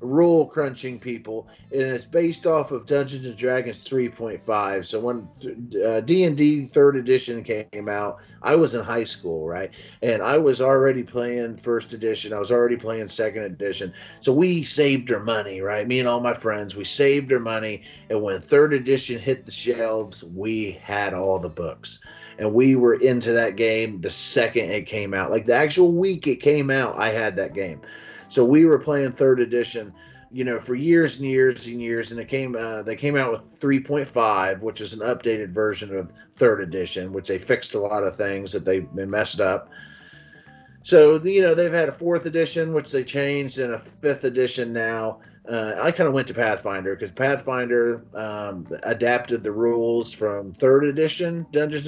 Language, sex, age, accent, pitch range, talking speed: English, male, 30-49, American, 110-140 Hz, 190 wpm